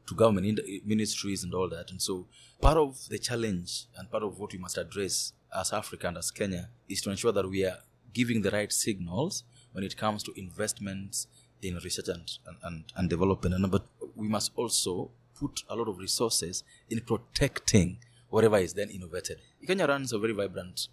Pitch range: 100-125 Hz